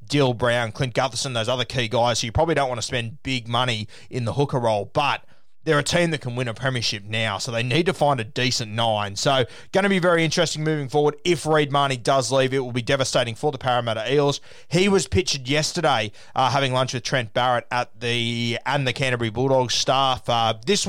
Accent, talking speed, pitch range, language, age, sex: Australian, 225 wpm, 120-150 Hz, English, 20-39, male